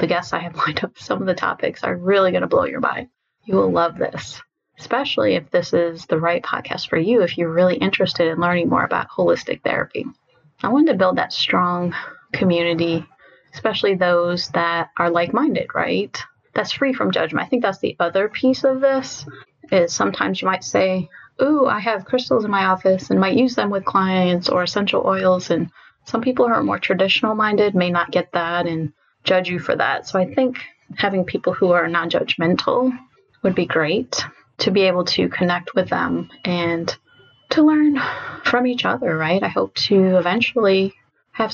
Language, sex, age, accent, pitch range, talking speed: English, female, 30-49, American, 170-235 Hz, 190 wpm